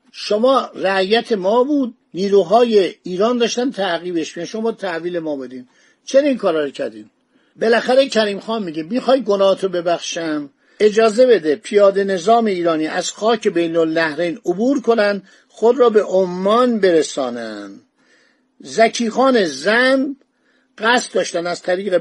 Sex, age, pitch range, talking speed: male, 50-69, 190-250 Hz, 125 wpm